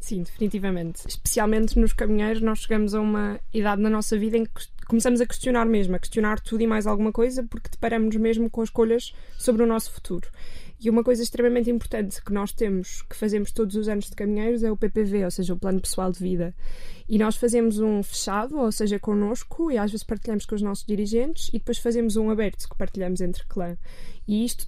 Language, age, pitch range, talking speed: Portuguese, 20-39, 205-230 Hz, 210 wpm